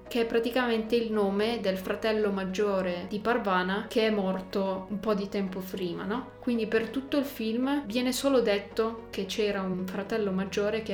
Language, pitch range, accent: Italian, 200-235 Hz, native